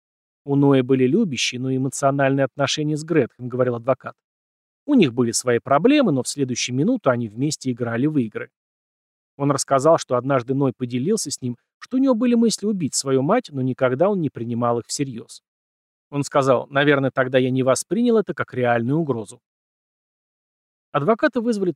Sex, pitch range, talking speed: male, 125-170 Hz, 170 wpm